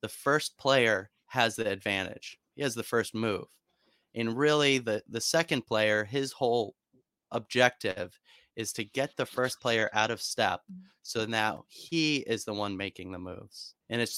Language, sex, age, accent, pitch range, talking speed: English, male, 30-49, American, 105-135 Hz, 170 wpm